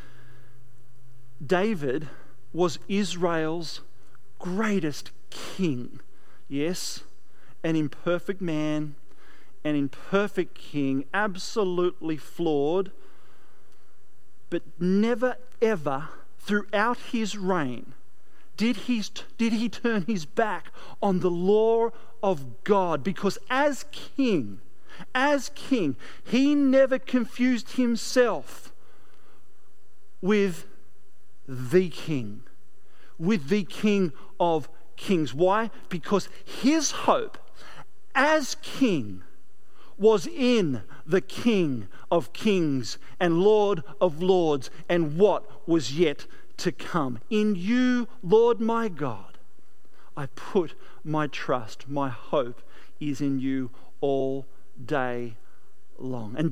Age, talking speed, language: 40-59, 95 wpm, English